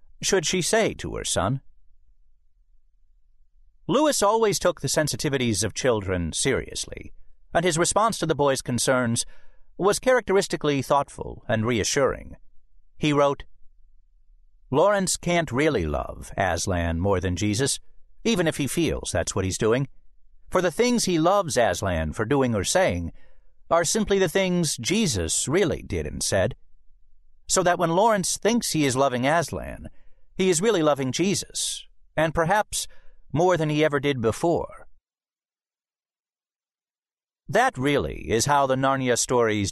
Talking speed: 140 wpm